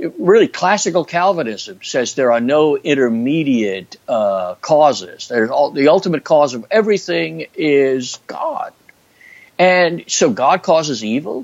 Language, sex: English, male